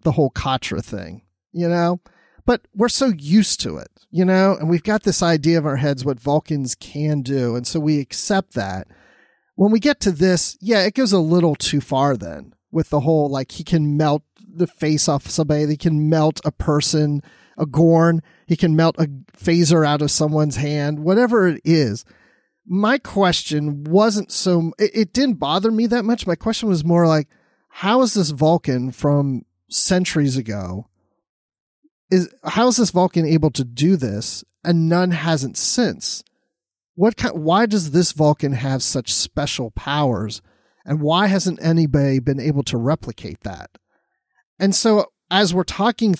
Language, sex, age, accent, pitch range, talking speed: English, male, 30-49, American, 145-185 Hz, 175 wpm